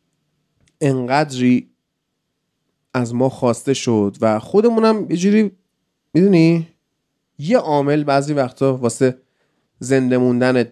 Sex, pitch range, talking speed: male, 120-170 Hz, 95 wpm